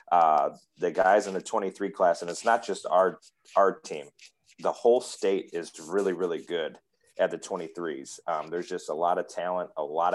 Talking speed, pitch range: 195 wpm, 90-115 Hz